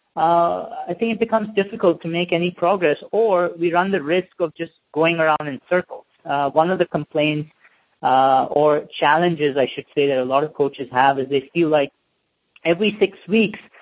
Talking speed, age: 195 wpm, 30-49